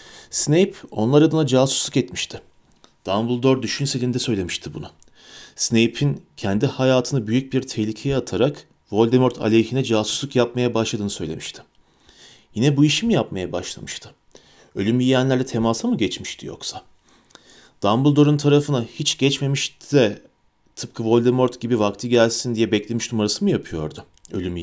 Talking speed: 120 wpm